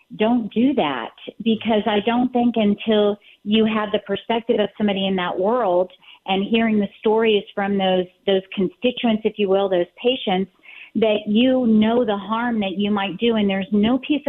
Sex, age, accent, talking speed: female, 40-59, American, 180 wpm